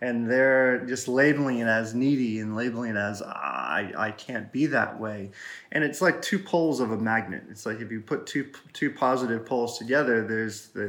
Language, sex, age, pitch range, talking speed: English, male, 20-39, 115-140 Hz, 210 wpm